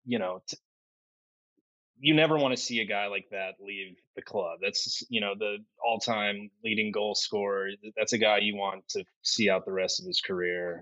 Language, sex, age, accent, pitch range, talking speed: English, male, 20-39, American, 95-120 Hz, 195 wpm